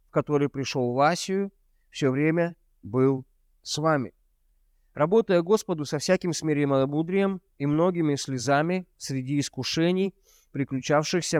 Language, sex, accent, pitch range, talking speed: Russian, male, native, 135-180 Hz, 110 wpm